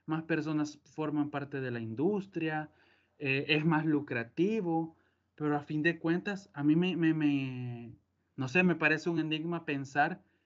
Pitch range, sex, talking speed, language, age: 130-160 Hz, male, 160 wpm, Spanish, 20-39